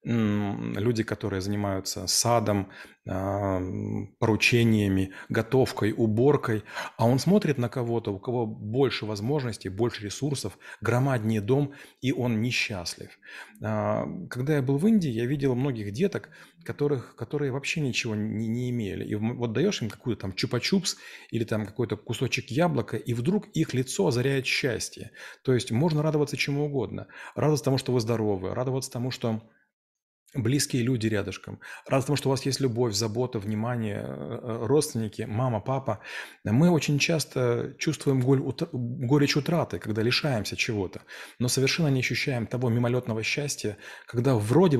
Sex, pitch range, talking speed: male, 110-135 Hz, 140 wpm